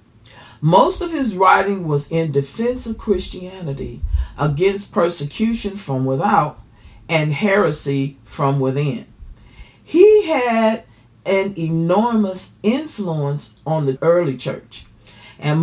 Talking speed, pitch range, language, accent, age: 105 wpm, 135-195 Hz, English, American, 40-59